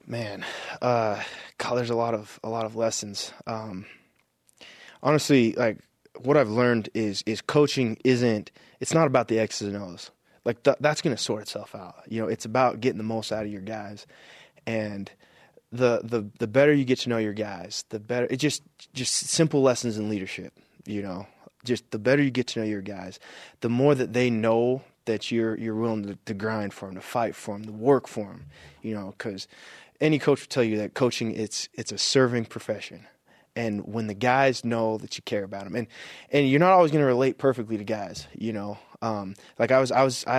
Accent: American